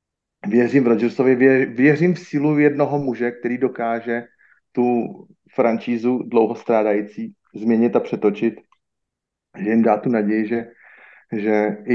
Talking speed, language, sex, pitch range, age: 115 wpm, Slovak, male, 110-125 Hz, 30-49